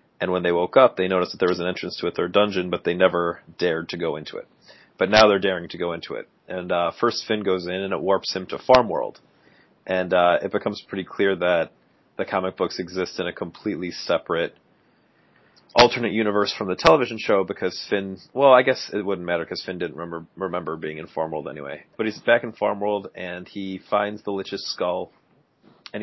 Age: 30-49